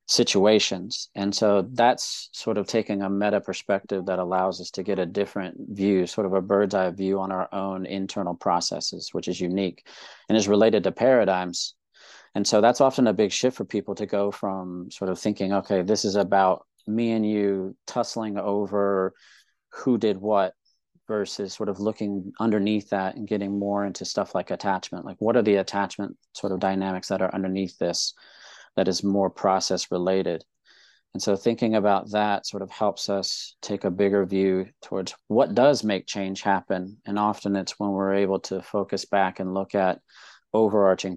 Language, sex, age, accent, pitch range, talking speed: English, male, 40-59, American, 95-105 Hz, 185 wpm